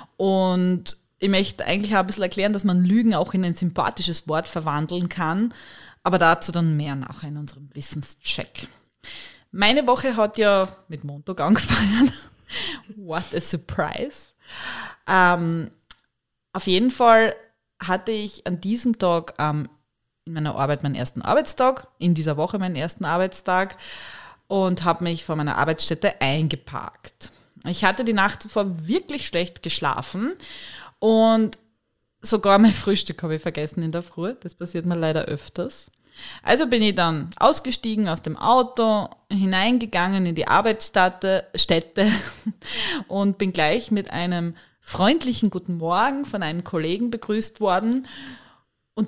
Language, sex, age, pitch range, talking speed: German, female, 20-39, 165-215 Hz, 140 wpm